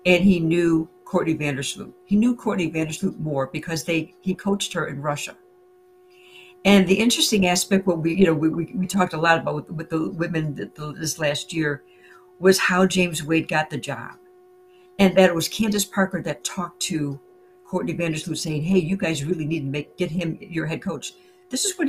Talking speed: 200 wpm